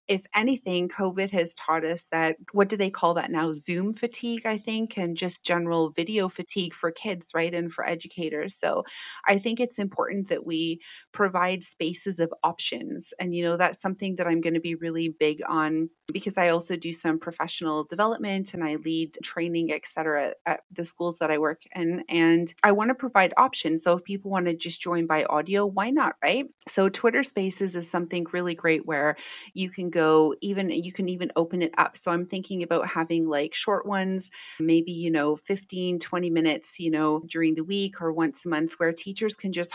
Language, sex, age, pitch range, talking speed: English, female, 30-49, 165-195 Hz, 205 wpm